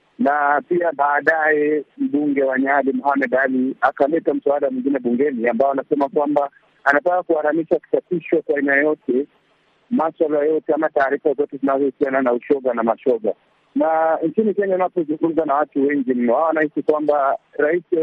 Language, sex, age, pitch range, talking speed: Swahili, male, 50-69, 140-160 Hz, 155 wpm